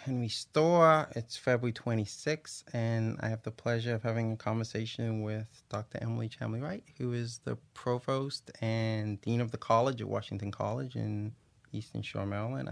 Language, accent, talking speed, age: English, American, 160 wpm, 20-39